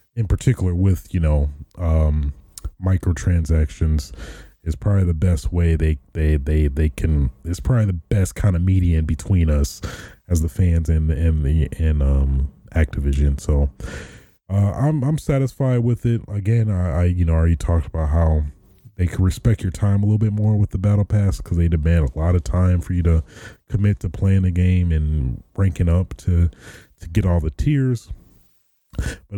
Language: English